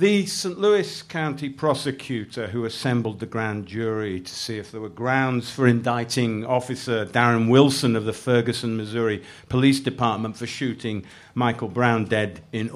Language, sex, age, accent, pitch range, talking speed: English, male, 50-69, British, 110-135 Hz, 155 wpm